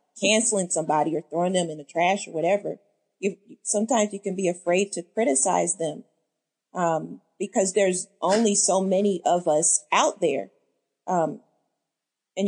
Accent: American